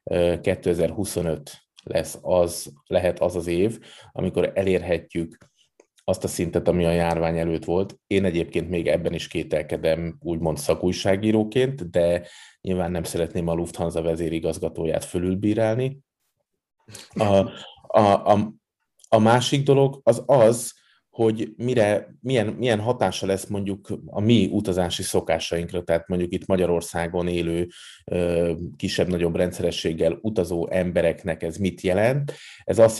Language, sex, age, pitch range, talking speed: Hungarian, male, 30-49, 85-105 Hz, 115 wpm